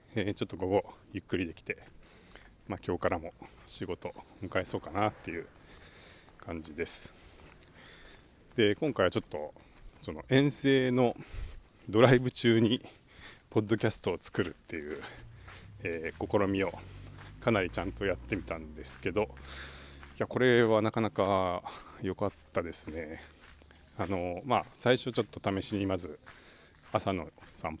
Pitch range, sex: 85-115 Hz, male